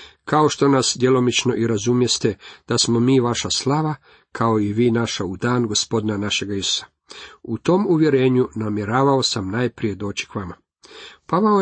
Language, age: Croatian, 50-69